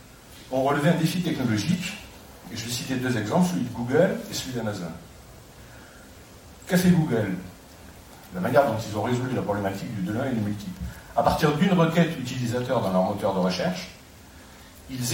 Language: French